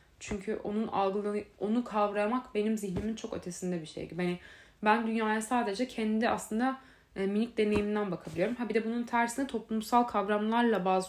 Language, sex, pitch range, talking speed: Turkish, female, 200-245 Hz, 160 wpm